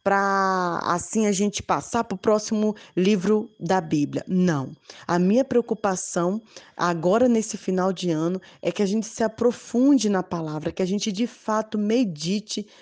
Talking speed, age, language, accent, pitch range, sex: 160 wpm, 20-39, Portuguese, Brazilian, 180-230 Hz, female